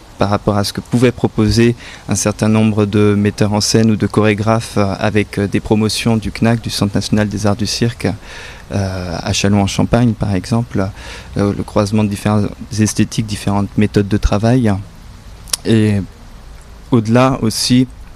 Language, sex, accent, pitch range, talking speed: French, male, French, 100-115 Hz, 160 wpm